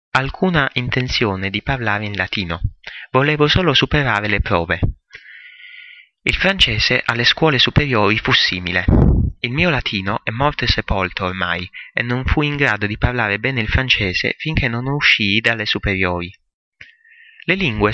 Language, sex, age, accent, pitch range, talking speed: Italian, male, 30-49, native, 100-130 Hz, 145 wpm